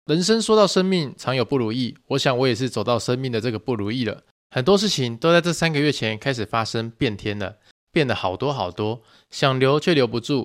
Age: 20-39